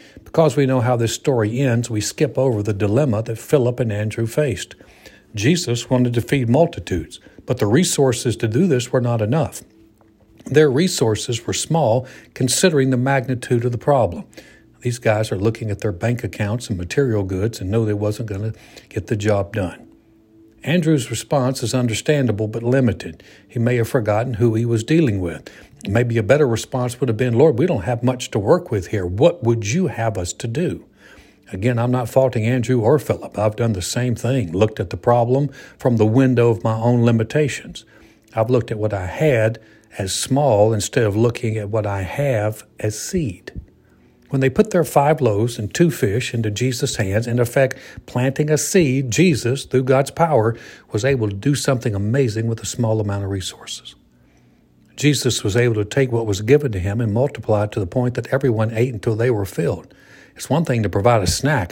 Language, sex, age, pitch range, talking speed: English, male, 60-79, 105-130 Hz, 195 wpm